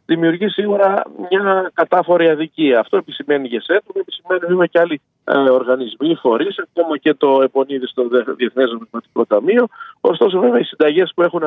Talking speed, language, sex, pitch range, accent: 155 wpm, Greek, male, 135-195 Hz, native